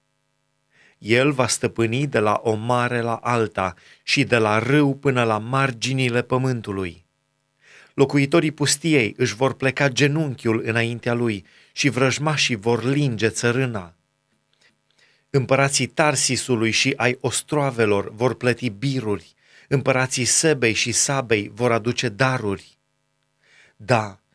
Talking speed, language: 115 wpm, Romanian